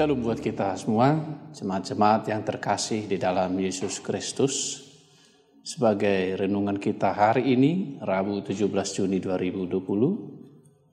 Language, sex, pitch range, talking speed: Indonesian, male, 105-140 Hz, 110 wpm